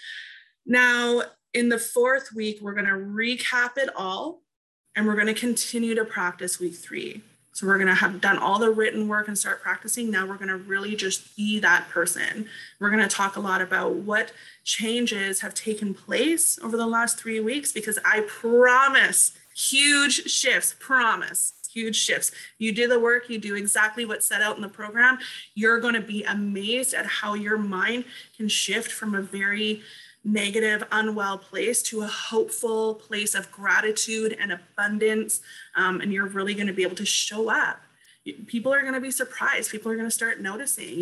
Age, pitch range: 20-39, 200-235 Hz